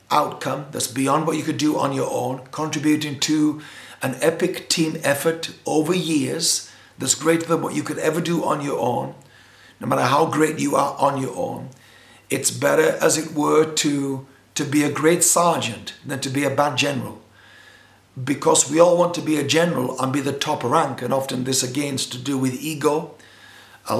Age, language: 60-79, English